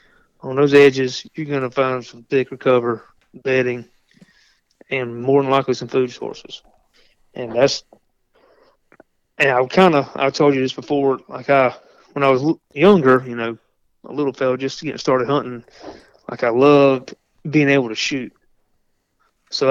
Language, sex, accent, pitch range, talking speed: English, male, American, 125-145 Hz, 155 wpm